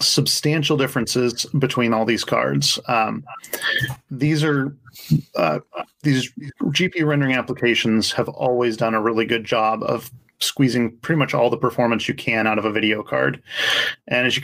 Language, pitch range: English, 115-140 Hz